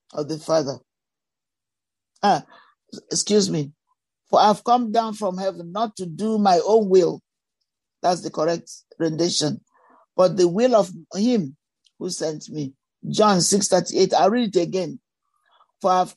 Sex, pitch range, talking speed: male, 165-220 Hz, 140 wpm